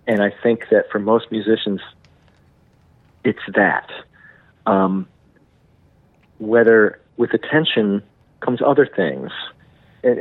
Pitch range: 100-120 Hz